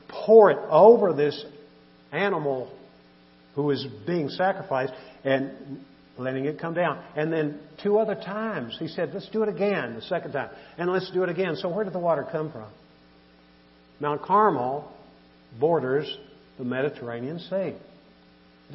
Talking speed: 150 wpm